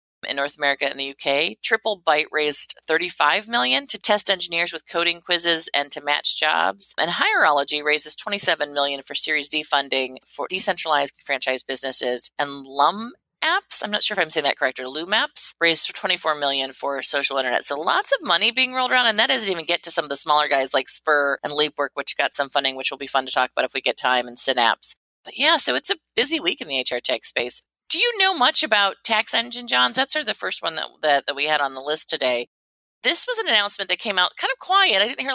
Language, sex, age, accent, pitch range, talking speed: English, female, 30-49, American, 140-210 Hz, 240 wpm